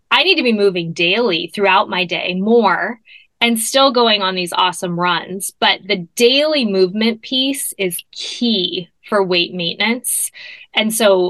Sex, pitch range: female, 190-240 Hz